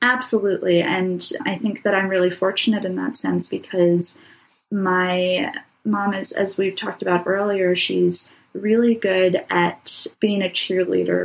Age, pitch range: 20-39, 170-195 Hz